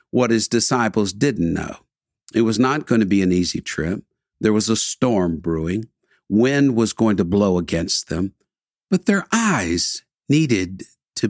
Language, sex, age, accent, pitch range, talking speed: English, male, 60-79, American, 95-130 Hz, 165 wpm